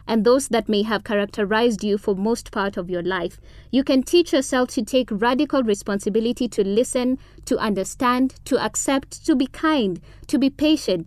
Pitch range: 200-260 Hz